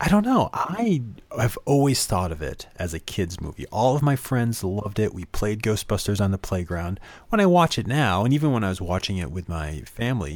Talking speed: 230 wpm